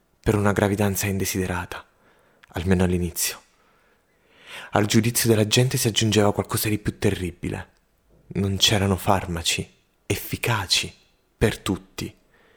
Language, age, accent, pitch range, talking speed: Italian, 30-49, native, 95-115 Hz, 105 wpm